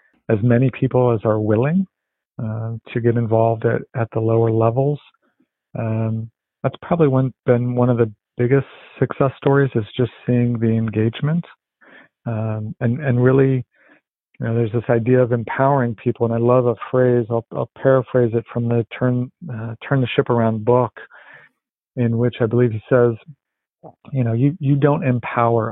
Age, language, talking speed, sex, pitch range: 50-69, English, 170 wpm, male, 110-125 Hz